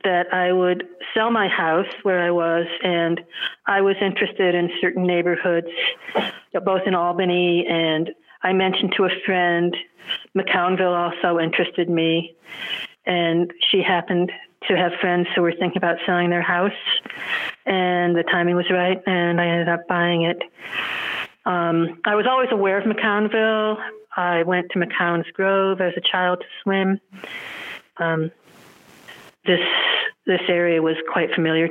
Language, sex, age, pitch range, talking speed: English, female, 40-59, 170-190 Hz, 145 wpm